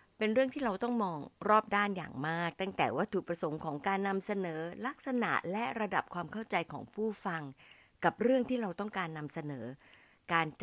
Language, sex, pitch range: Thai, female, 155-210 Hz